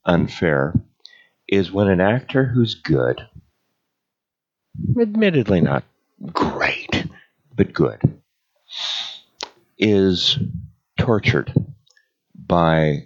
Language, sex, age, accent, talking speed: English, male, 50-69, American, 70 wpm